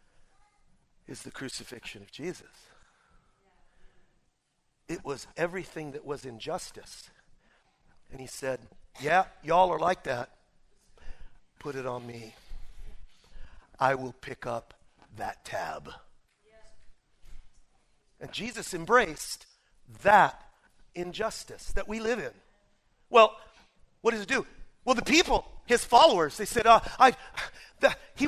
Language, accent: English, American